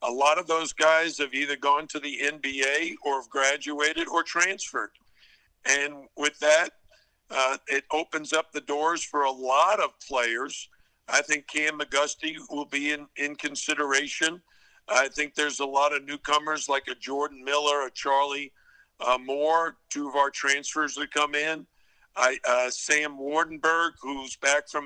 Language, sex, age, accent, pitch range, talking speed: English, male, 60-79, American, 140-160 Hz, 165 wpm